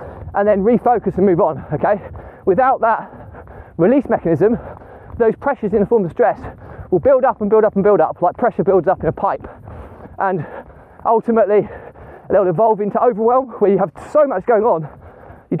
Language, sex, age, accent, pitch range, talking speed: English, male, 20-39, British, 180-220 Hz, 185 wpm